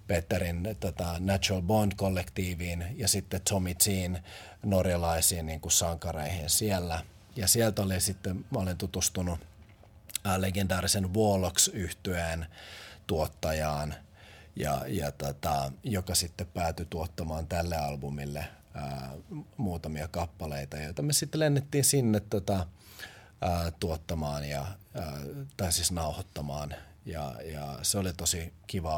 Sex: male